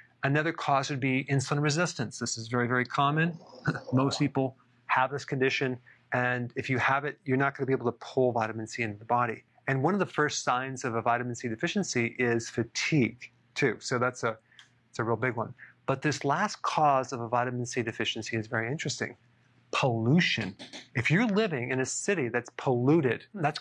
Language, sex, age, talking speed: English, male, 30-49, 200 wpm